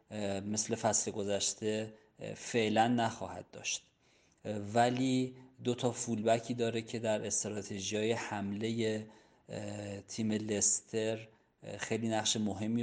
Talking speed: 100 wpm